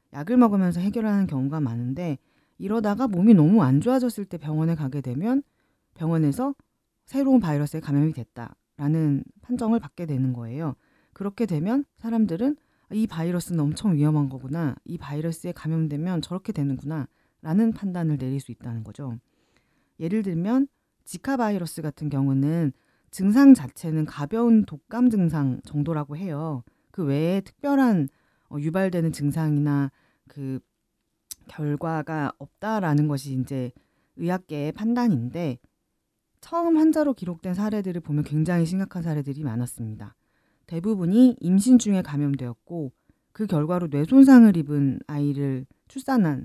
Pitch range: 140-205 Hz